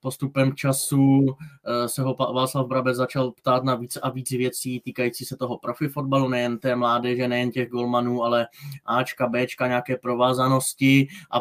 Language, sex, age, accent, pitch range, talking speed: Czech, male, 20-39, native, 130-150 Hz, 155 wpm